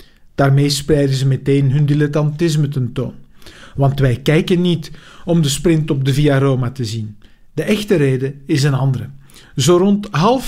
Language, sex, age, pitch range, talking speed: Dutch, male, 50-69, 135-165 Hz, 170 wpm